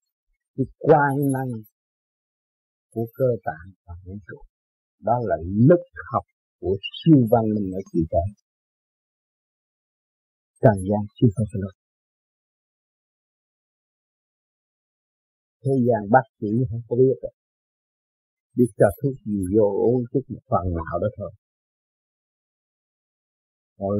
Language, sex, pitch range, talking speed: Vietnamese, male, 95-120 Hz, 115 wpm